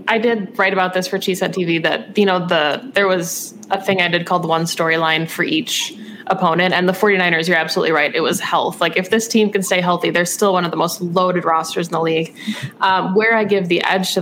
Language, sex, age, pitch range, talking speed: English, female, 20-39, 170-190 Hz, 250 wpm